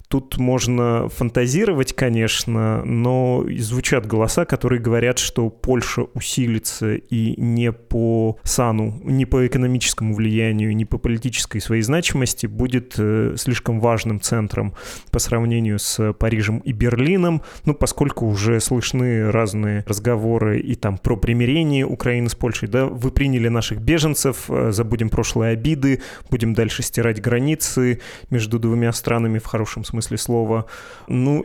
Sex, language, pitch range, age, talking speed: male, Russian, 110-125 Hz, 30-49, 130 wpm